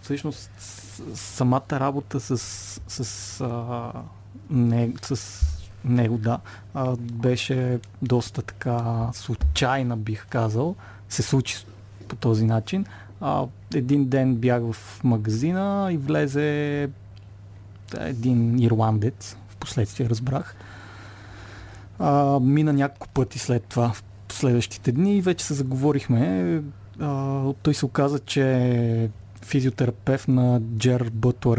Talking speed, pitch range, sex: 100 wpm, 105-135 Hz, male